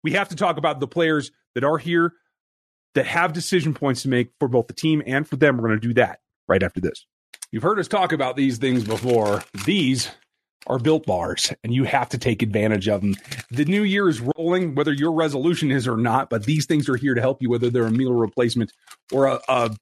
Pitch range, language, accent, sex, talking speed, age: 115-150 Hz, English, American, male, 235 wpm, 30-49